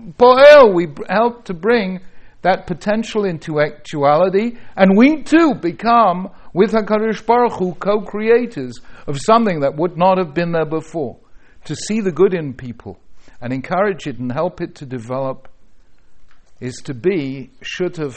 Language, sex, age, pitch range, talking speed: English, male, 60-79, 110-170 Hz, 135 wpm